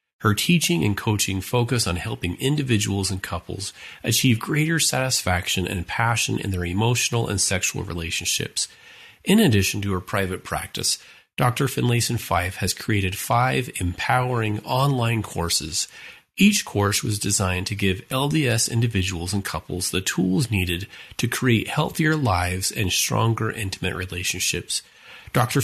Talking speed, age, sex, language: 135 wpm, 30-49, male, English